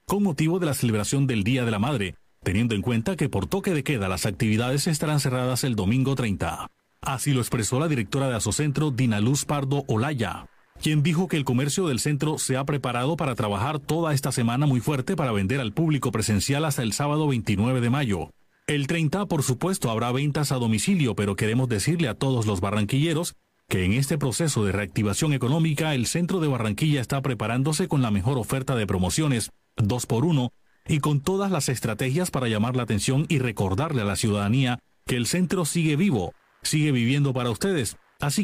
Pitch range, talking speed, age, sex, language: 115-150 Hz, 195 wpm, 40-59, male, Spanish